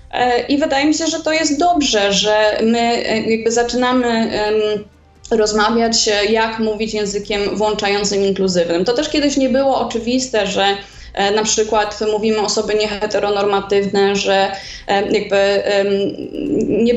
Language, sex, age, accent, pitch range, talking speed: Polish, female, 20-39, native, 205-230 Hz, 120 wpm